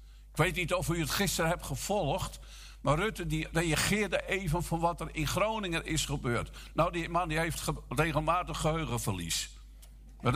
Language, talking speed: Dutch, 155 wpm